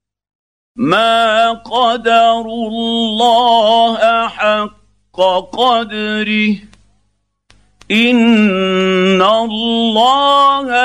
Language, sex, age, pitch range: Arabic, male, 50-69, 190-230 Hz